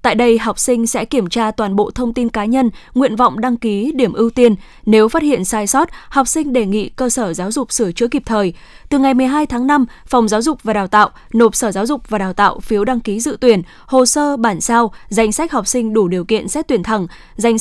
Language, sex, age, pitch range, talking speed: Vietnamese, female, 10-29, 215-255 Hz, 255 wpm